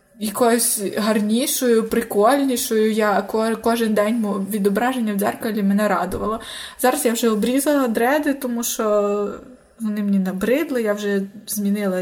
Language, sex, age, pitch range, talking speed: Ukrainian, female, 20-39, 210-245 Hz, 120 wpm